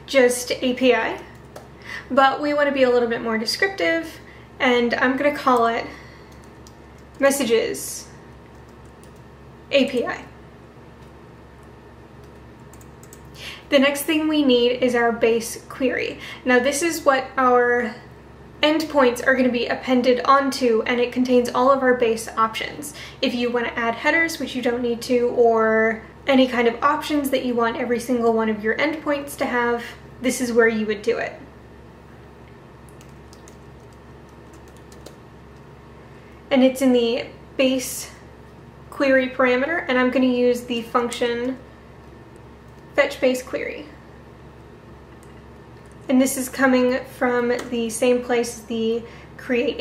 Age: 10-29